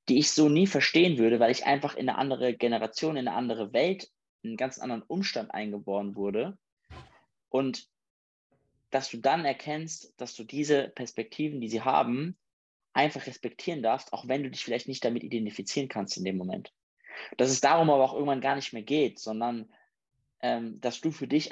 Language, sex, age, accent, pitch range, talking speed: English, male, 20-39, German, 120-145 Hz, 185 wpm